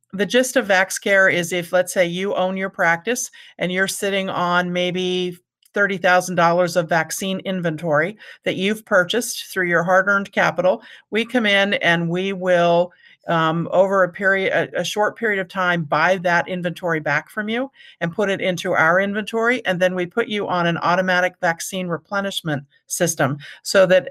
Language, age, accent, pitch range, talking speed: English, 50-69, American, 175-205 Hz, 175 wpm